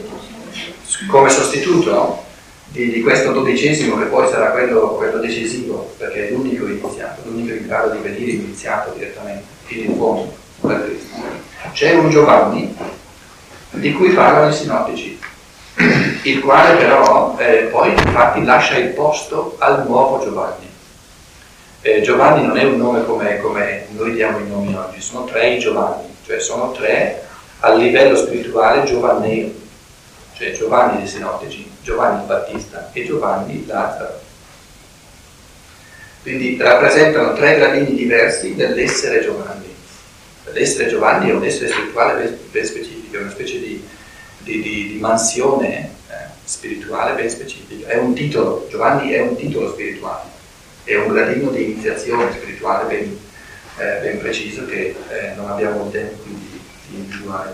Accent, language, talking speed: native, Italian, 140 wpm